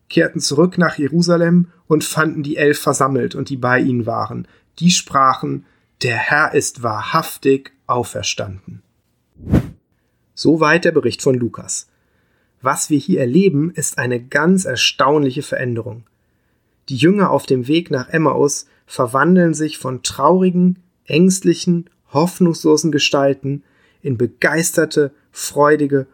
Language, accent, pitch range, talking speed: German, German, 125-160 Hz, 120 wpm